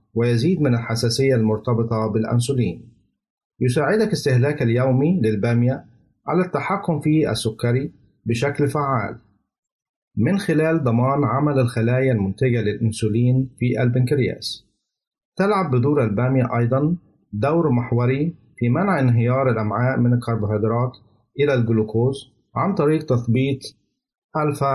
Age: 50-69